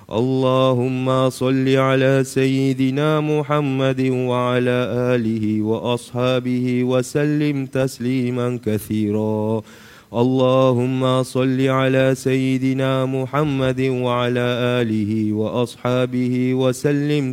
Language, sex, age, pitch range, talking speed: Malay, male, 30-49, 120-130 Hz, 70 wpm